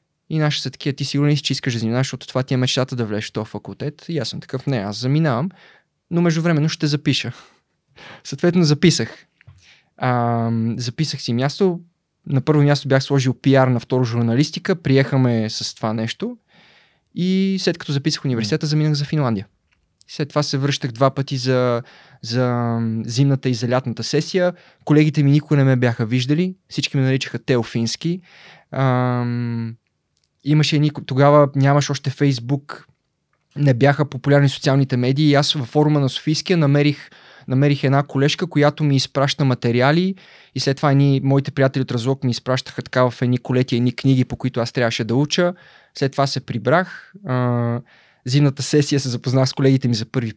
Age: 20-39